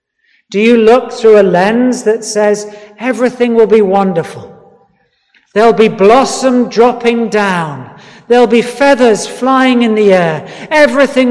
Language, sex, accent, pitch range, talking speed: English, male, British, 180-235 Hz, 135 wpm